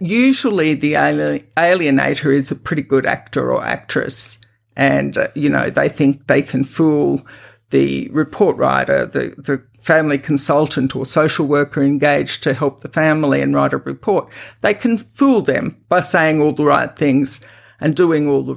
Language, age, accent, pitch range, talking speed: English, 50-69, Australian, 135-170 Hz, 165 wpm